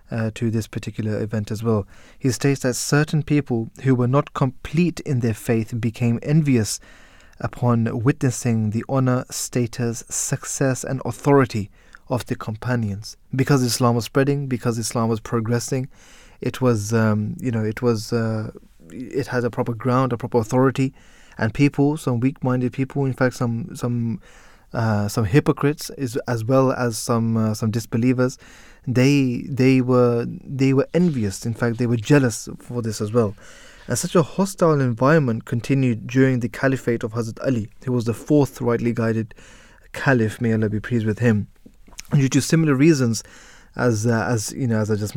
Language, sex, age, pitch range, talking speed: English, male, 20-39, 115-135 Hz, 170 wpm